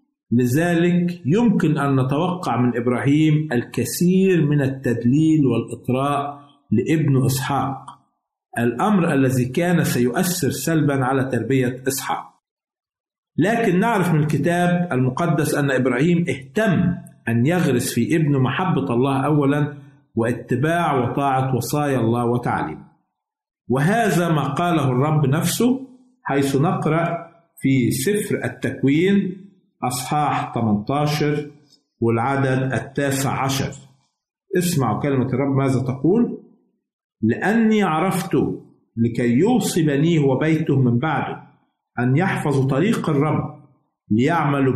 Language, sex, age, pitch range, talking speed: Arabic, male, 50-69, 130-170 Hz, 95 wpm